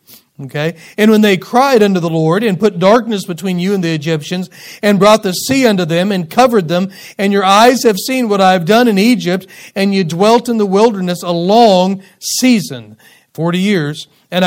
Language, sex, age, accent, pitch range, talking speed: English, male, 40-59, American, 165-210 Hz, 200 wpm